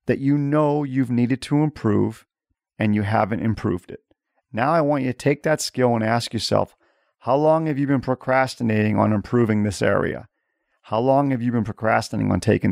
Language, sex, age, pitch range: English, male, 40-59, 105-135 Hz